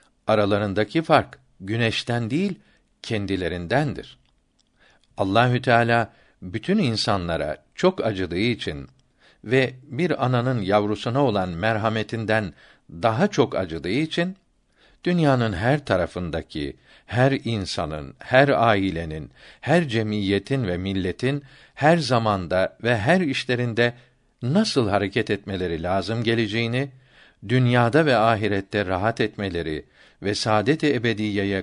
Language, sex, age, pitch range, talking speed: Turkish, male, 60-79, 100-130 Hz, 95 wpm